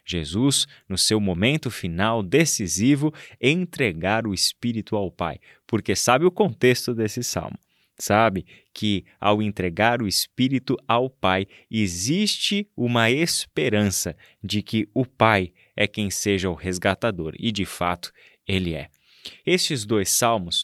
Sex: male